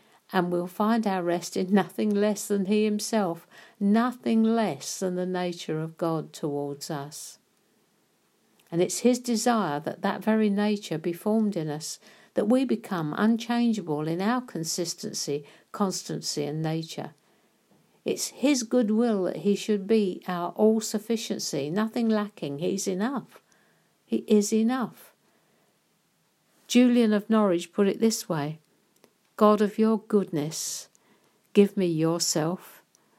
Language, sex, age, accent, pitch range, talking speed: English, female, 60-79, British, 165-210 Hz, 130 wpm